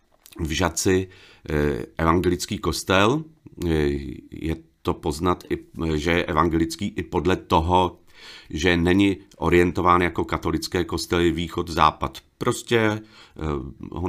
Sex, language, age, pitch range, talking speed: male, Czech, 40-59, 80-110 Hz, 100 wpm